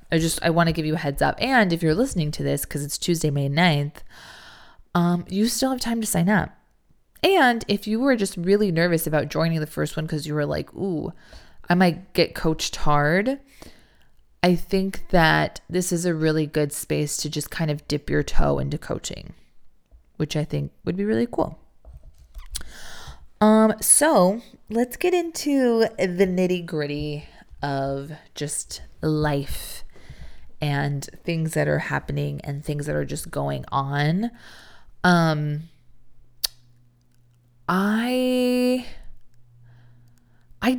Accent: American